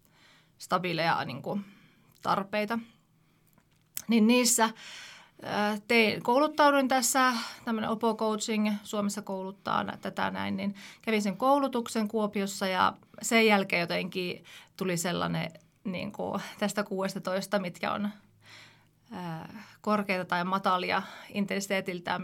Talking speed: 100 wpm